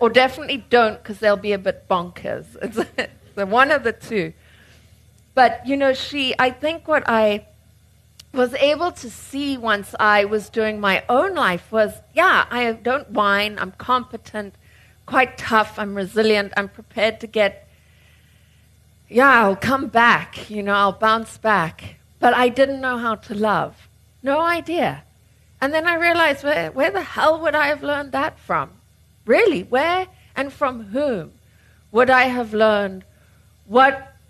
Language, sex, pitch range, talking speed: English, female, 200-275 Hz, 160 wpm